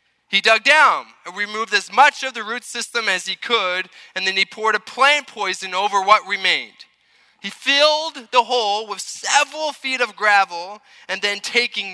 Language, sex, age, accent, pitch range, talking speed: Russian, male, 20-39, American, 180-230 Hz, 180 wpm